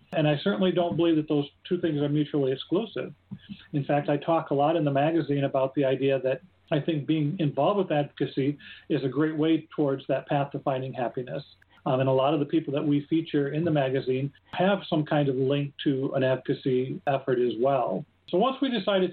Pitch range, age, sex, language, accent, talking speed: 140-165 Hz, 40-59, male, English, American, 215 wpm